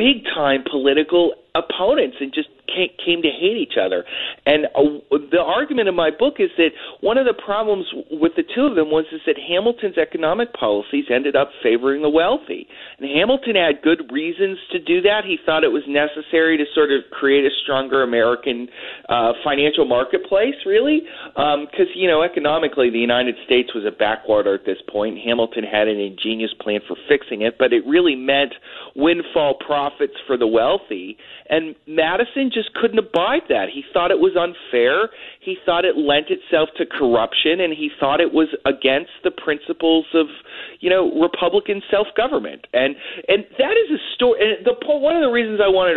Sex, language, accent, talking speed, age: male, English, American, 180 wpm, 40-59